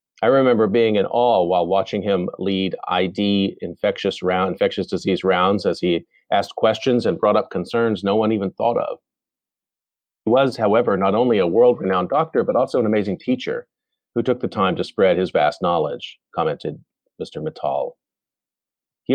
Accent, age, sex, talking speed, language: American, 40-59, male, 170 wpm, English